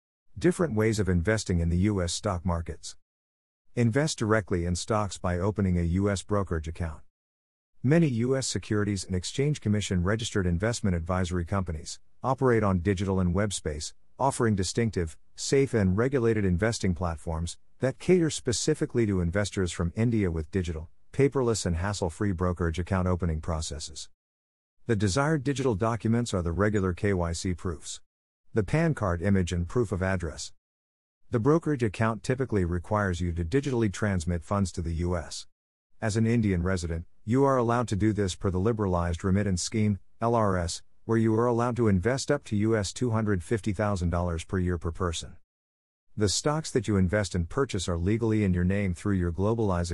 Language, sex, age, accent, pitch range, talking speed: English, male, 50-69, American, 85-110 Hz, 160 wpm